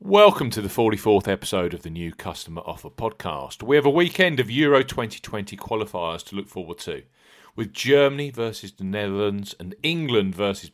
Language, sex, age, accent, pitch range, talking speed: English, male, 40-59, British, 90-135 Hz, 175 wpm